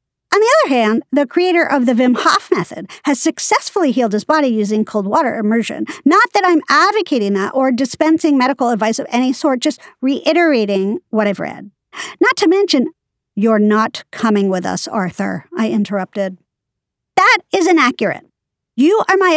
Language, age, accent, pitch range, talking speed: English, 50-69, American, 195-275 Hz, 165 wpm